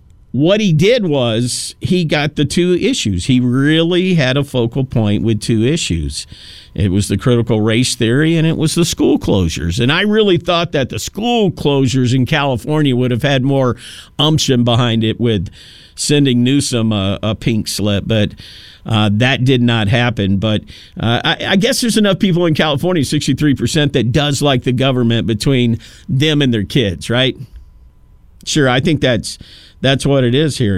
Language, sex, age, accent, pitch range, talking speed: English, male, 50-69, American, 120-155 Hz, 180 wpm